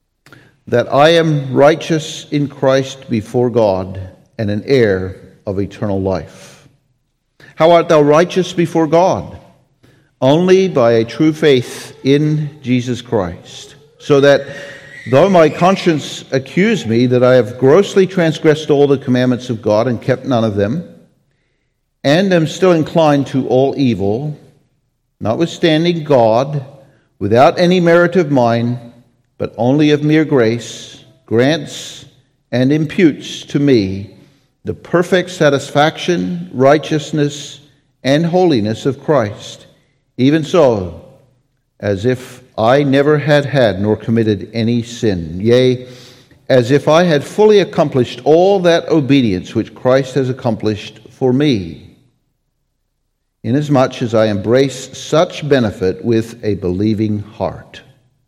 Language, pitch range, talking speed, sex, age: English, 120-150 Hz, 125 wpm, male, 50-69